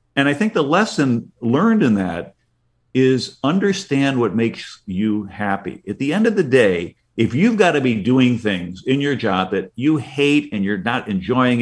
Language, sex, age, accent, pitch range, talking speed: English, male, 50-69, American, 105-145 Hz, 190 wpm